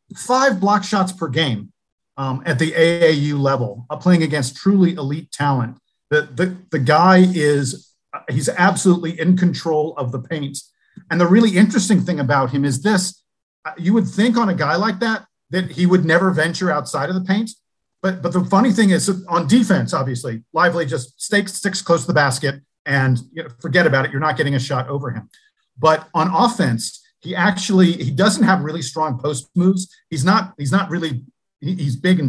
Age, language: 50-69, English